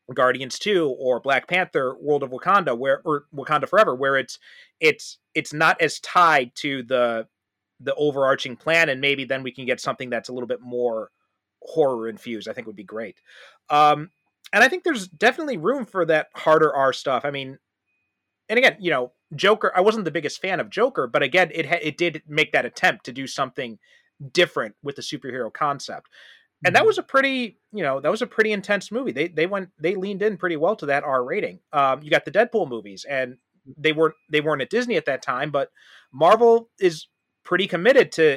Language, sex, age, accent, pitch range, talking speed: English, male, 30-49, American, 130-185 Hz, 210 wpm